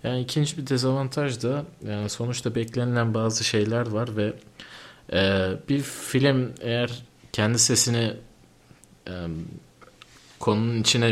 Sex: male